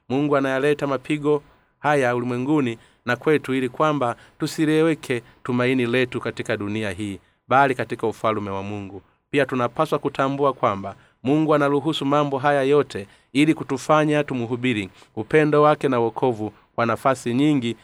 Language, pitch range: Swahili, 115-145 Hz